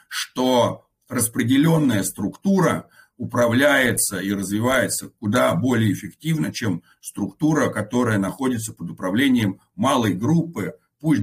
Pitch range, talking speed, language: 105-150 Hz, 95 wpm, Russian